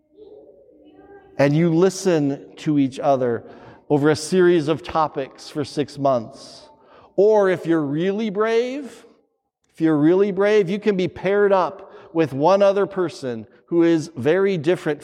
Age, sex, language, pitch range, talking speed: 40-59, male, English, 135-175 Hz, 145 wpm